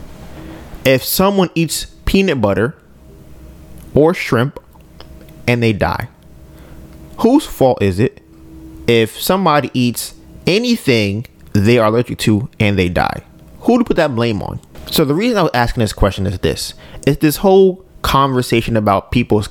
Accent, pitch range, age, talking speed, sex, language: American, 110-175 Hz, 20-39, 145 wpm, male, English